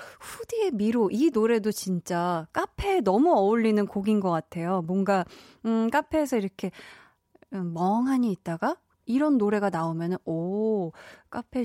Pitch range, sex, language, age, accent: 185-260 Hz, female, Korean, 20-39, native